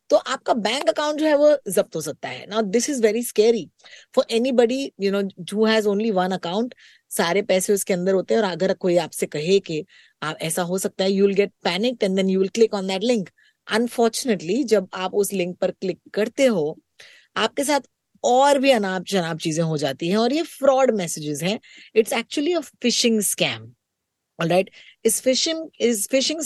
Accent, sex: native, female